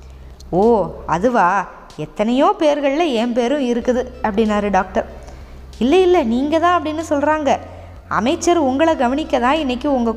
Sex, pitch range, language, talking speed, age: female, 185-285 Hz, Tamil, 125 wpm, 20-39